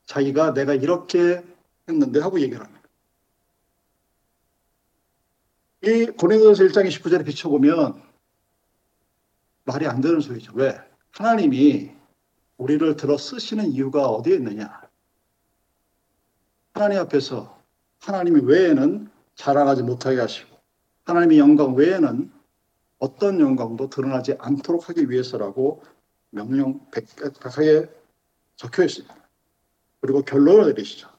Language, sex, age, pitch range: Korean, male, 50-69, 140-200 Hz